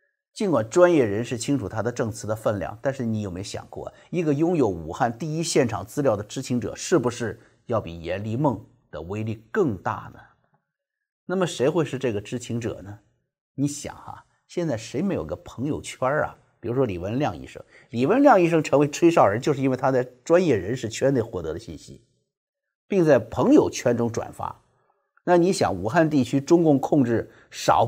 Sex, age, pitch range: male, 50-69, 110-150 Hz